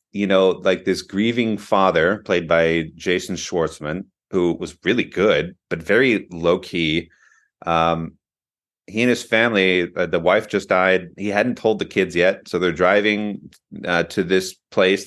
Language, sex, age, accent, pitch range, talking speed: English, male, 30-49, American, 85-105 Hz, 165 wpm